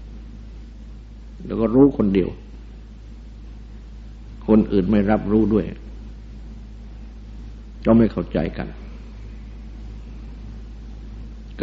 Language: Thai